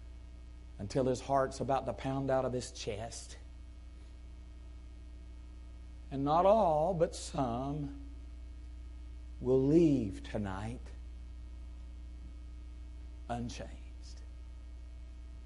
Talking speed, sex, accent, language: 75 wpm, male, American, English